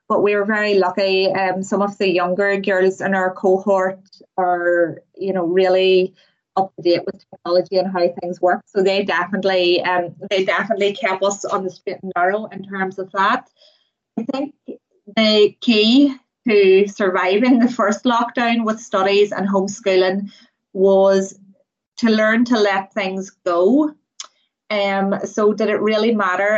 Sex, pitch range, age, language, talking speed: female, 185-205 Hz, 30-49, English, 160 wpm